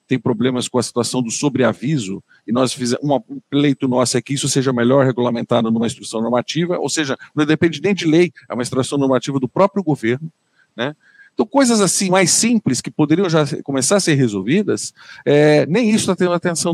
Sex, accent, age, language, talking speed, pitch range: male, Brazilian, 50-69, Portuguese, 210 wpm, 125-170 Hz